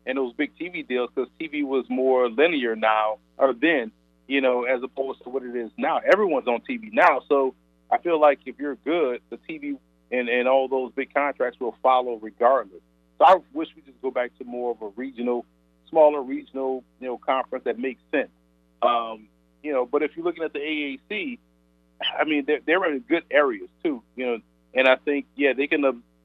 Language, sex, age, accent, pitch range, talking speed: English, male, 40-59, American, 115-145 Hz, 210 wpm